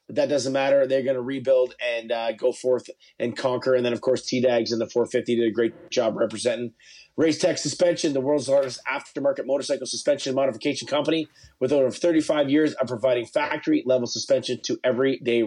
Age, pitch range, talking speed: 30-49, 125-160 Hz, 190 wpm